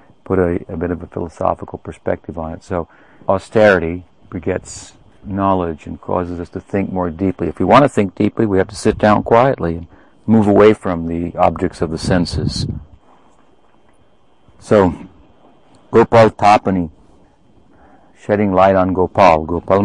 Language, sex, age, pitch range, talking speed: English, male, 50-69, 85-100 Hz, 150 wpm